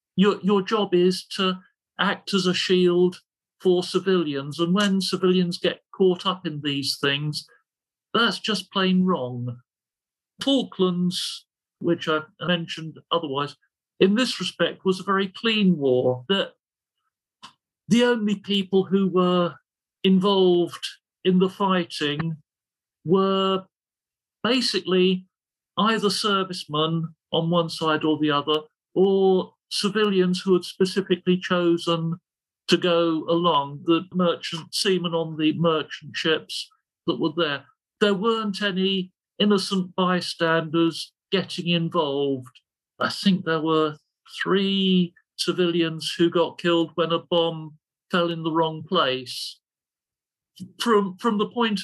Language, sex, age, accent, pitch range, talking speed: English, male, 50-69, British, 165-190 Hz, 120 wpm